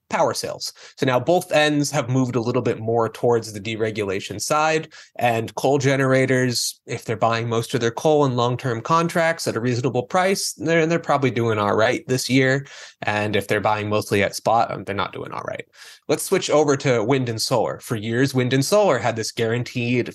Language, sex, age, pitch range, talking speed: English, male, 20-39, 115-150 Hz, 205 wpm